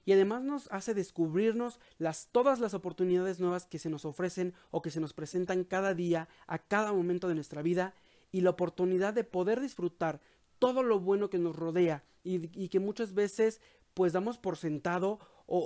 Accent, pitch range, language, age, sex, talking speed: Mexican, 170-210 Hz, Spanish, 40-59, male, 190 wpm